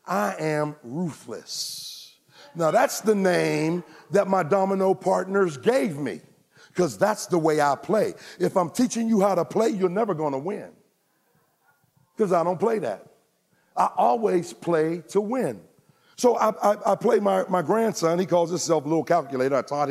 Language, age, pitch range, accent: English, 50-69, 140-190 Hz, American